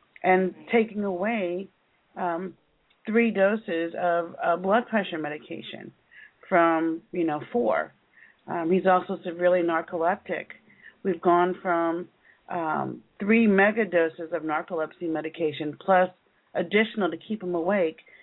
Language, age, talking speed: English, 40-59, 120 wpm